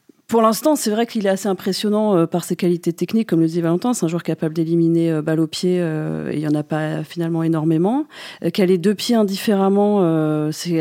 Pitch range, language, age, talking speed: 165-205 Hz, French, 40-59, 210 wpm